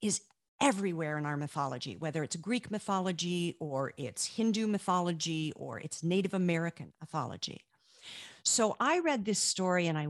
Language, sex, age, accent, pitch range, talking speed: English, female, 50-69, American, 155-190 Hz, 150 wpm